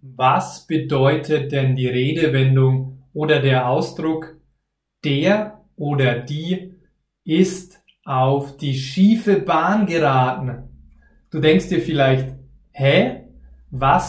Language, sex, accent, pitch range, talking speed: German, male, German, 135-175 Hz, 100 wpm